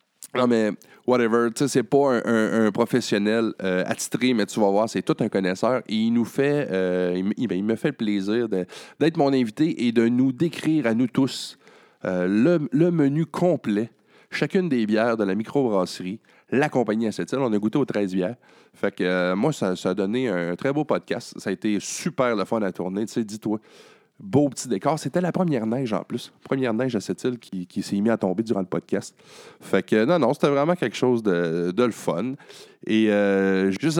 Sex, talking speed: male, 220 wpm